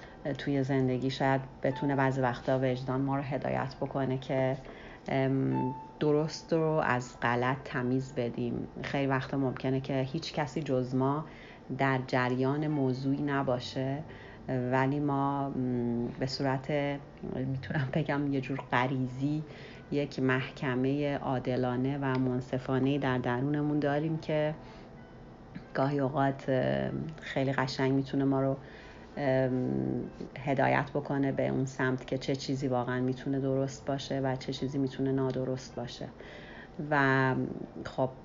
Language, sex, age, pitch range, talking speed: English, female, 40-59, 125-140 Hz, 120 wpm